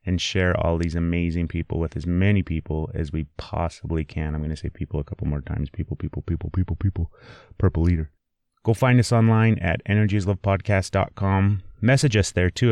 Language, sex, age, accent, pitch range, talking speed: English, male, 30-49, American, 85-105 Hz, 195 wpm